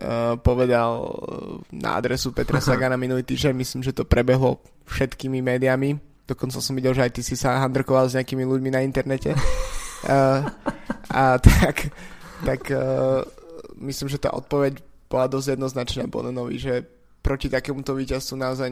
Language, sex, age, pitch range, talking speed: Slovak, male, 20-39, 125-135 Hz, 145 wpm